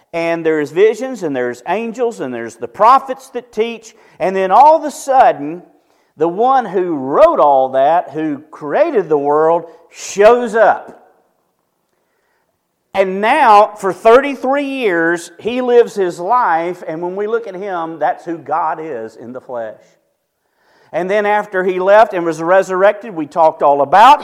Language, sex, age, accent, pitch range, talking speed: English, male, 40-59, American, 165-220 Hz, 160 wpm